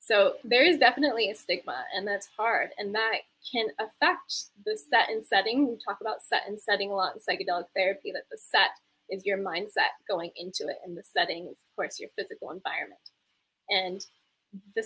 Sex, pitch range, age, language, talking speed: female, 195-255 Hz, 10-29, English, 195 wpm